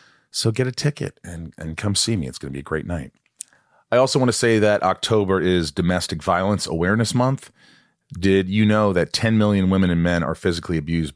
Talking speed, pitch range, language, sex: 215 wpm, 80-105 Hz, English, male